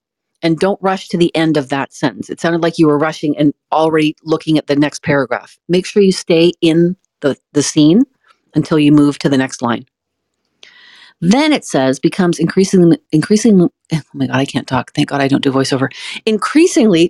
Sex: female